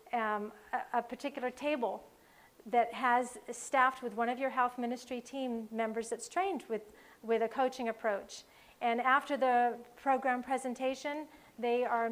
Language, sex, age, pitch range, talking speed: English, female, 40-59, 225-260 Hz, 150 wpm